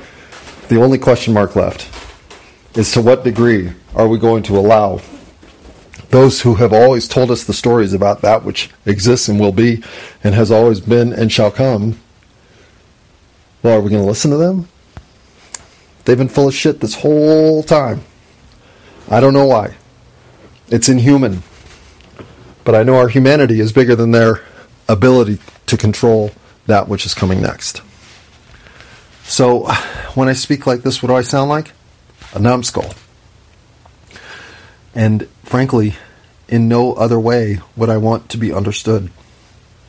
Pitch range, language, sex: 100-120 Hz, English, male